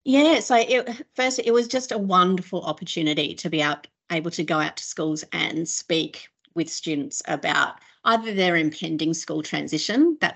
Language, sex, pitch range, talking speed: English, female, 160-210 Hz, 160 wpm